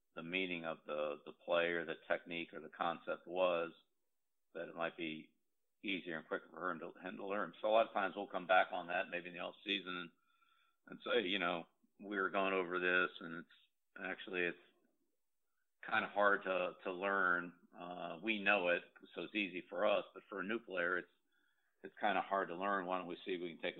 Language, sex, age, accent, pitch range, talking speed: English, male, 50-69, American, 85-95 Hz, 225 wpm